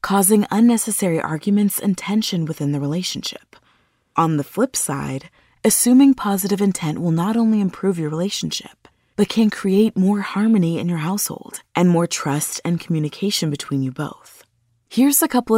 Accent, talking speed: American, 155 wpm